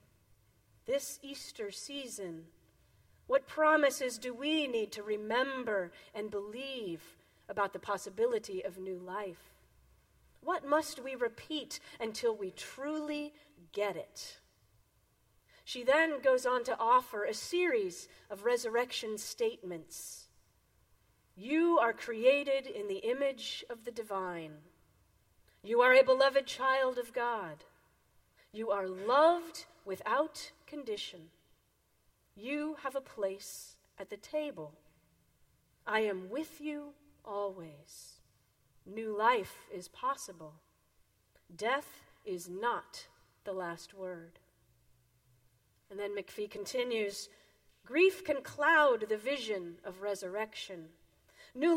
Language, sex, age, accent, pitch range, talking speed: English, female, 40-59, American, 190-290 Hz, 110 wpm